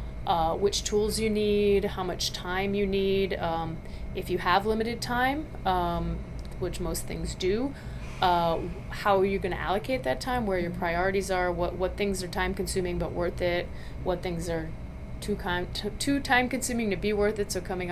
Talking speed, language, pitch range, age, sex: 190 wpm, English, 170-195 Hz, 30-49, female